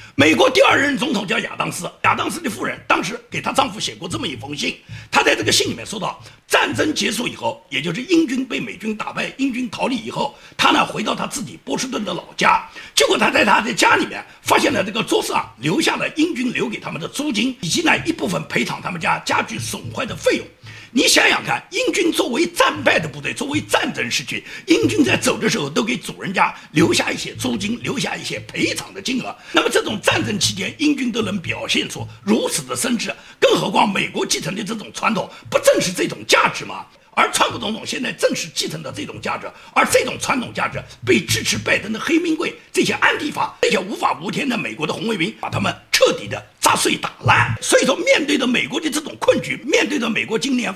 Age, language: 50-69, Chinese